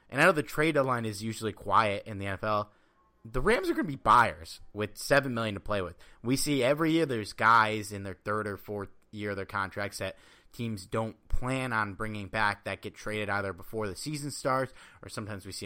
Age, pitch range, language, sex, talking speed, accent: 30-49, 95-115 Hz, English, male, 225 wpm, American